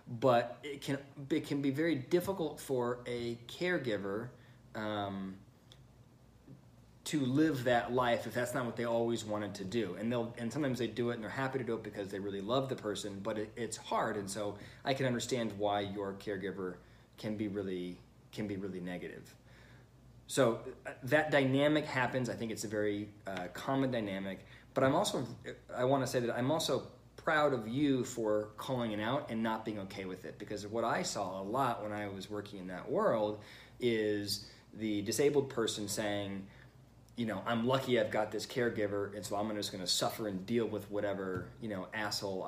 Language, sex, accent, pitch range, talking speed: English, male, American, 105-125 Hz, 195 wpm